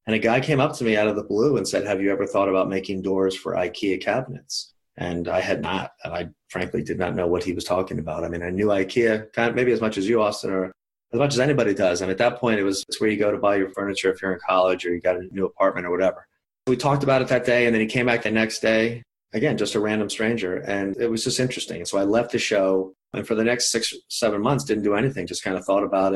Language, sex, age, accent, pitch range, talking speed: English, male, 30-49, American, 100-120 Hz, 295 wpm